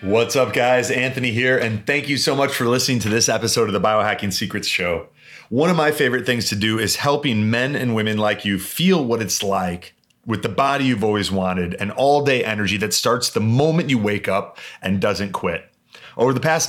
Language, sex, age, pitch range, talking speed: English, male, 30-49, 105-130 Hz, 215 wpm